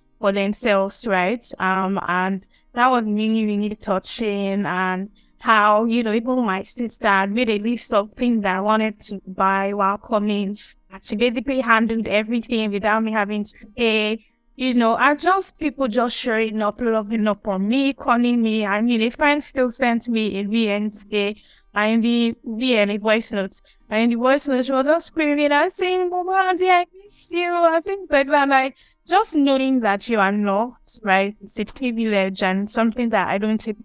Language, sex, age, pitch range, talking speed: English, female, 20-39, 200-240 Hz, 190 wpm